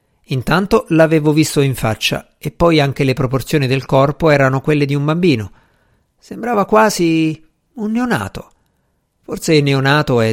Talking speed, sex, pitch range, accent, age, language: 140 wpm, male, 120-170 Hz, native, 50-69, Italian